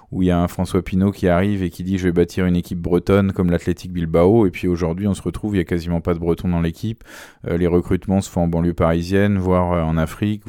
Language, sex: French, male